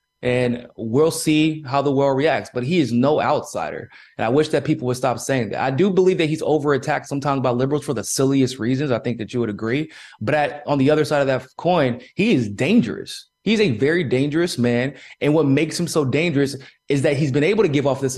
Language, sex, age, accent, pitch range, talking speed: English, male, 20-39, American, 130-160 Hz, 235 wpm